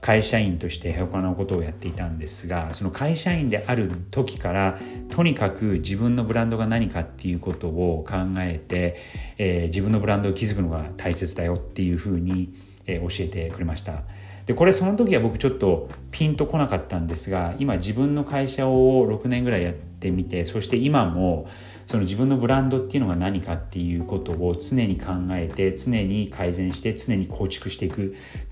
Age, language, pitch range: 40-59, Japanese, 90-115 Hz